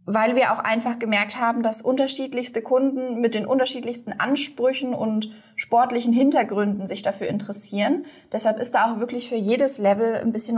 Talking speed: 165 wpm